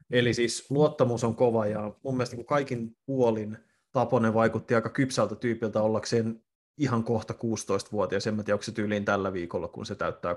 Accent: native